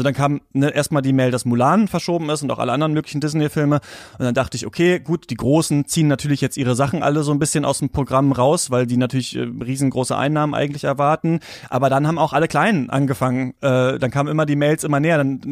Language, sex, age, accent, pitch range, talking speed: German, male, 30-49, German, 135-160 Hz, 240 wpm